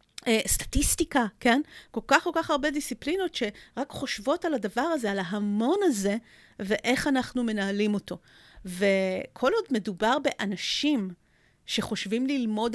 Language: Hebrew